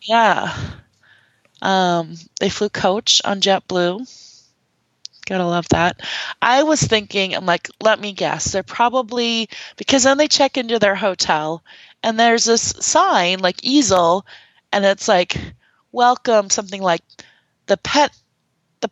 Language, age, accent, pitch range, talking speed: English, 20-39, American, 185-235 Hz, 135 wpm